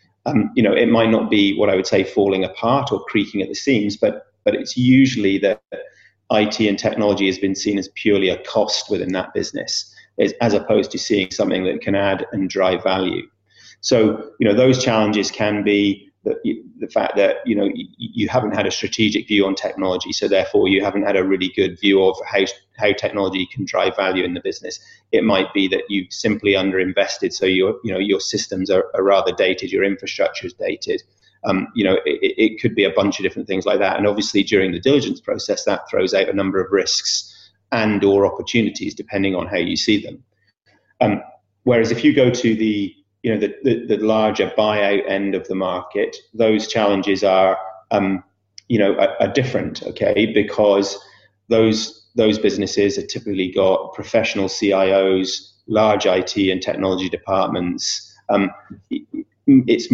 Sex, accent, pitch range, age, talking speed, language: male, British, 95-110 Hz, 30-49, 190 wpm, English